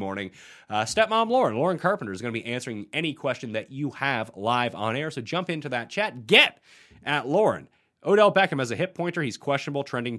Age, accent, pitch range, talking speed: 30-49, American, 110-155 Hz, 210 wpm